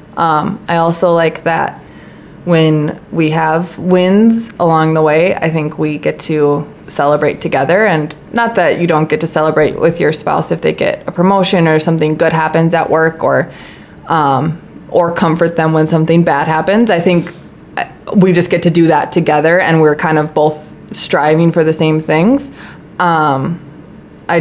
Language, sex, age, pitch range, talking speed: English, female, 20-39, 160-185 Hz, 175 wpm